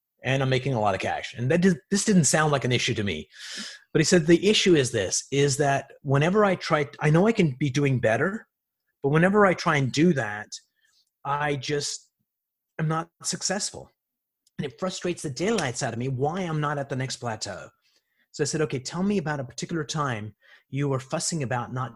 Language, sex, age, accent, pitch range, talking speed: English, male, 30-49, American, 130-170 Hz, 215 wpm